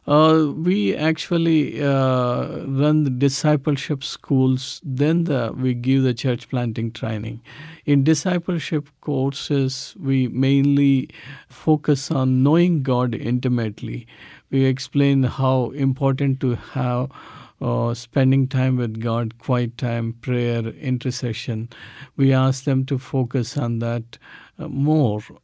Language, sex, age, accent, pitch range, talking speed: English, male, 50-69, Indian, 120-145 Hz, 115 wpm